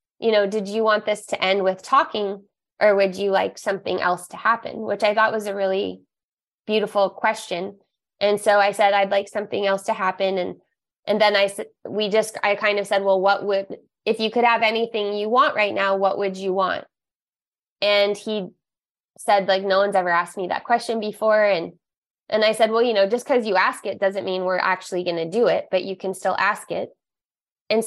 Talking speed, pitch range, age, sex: 215 wpm, 195-220 Hz, 20-39, female